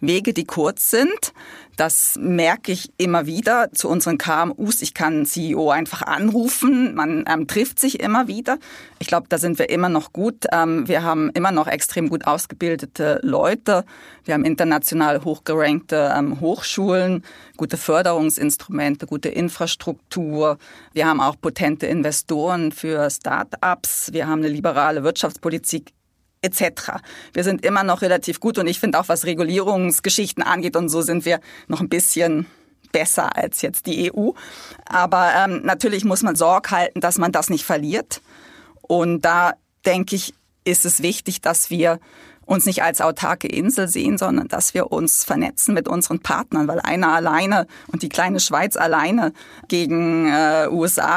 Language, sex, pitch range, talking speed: German, female, 155-185 Hz, 155 wpm